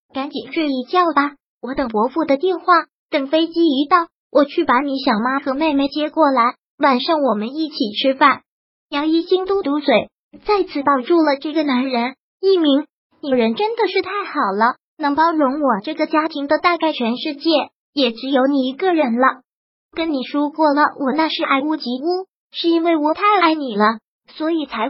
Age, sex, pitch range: 20-39, male, 260-325 Hz